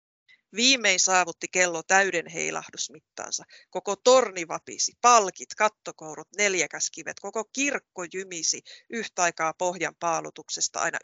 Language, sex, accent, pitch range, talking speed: Finnish, female, native, 160-205 Hz, 110 wpm